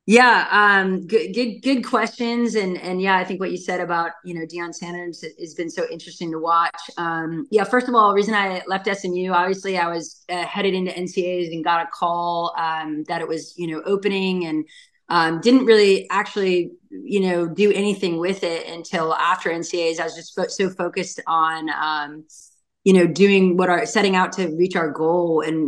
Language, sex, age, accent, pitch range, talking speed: English, female, 20-39, American, 165-195 Hz, 205 wpm